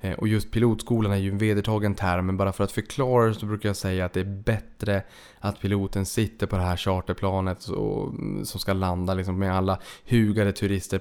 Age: 20-39